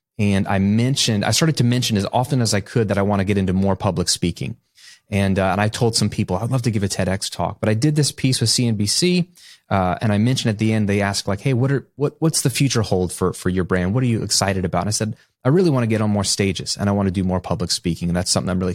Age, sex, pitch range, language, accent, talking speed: 30-49, male, 100-135 Hz, English, American, 300 wpm